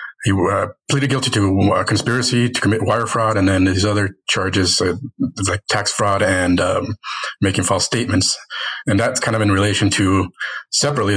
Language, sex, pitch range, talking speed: English, male, 100-115 Hz, 175 wpm